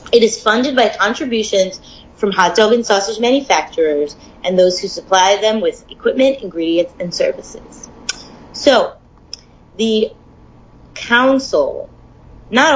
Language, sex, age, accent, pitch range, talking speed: English, female, 30-49, American, 180-270 Hz, 120 wpm